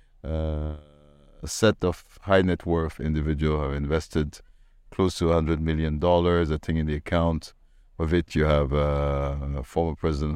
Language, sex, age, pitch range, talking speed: English, male, 50-69, 80-100 Hz, 160 wpm